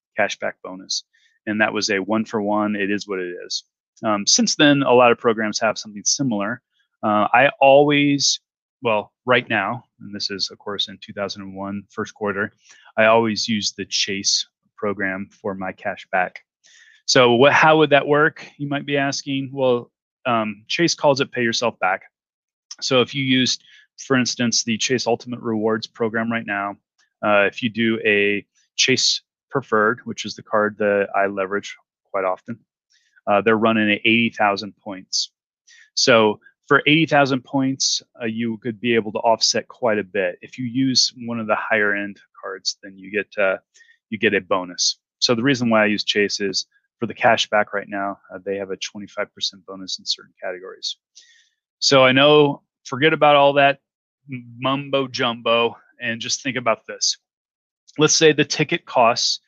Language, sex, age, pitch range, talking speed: English, male, 30-49, 105-140 Hz, 180 wpm